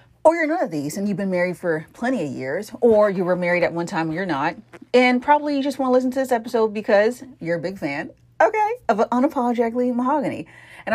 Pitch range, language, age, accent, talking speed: 170-250 Hz, English, 40-59, American, 235 wpm